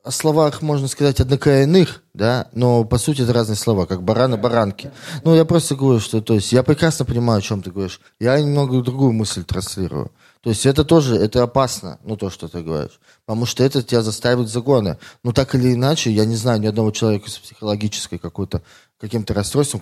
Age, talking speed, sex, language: 20-39, 205 wpm, male, Russian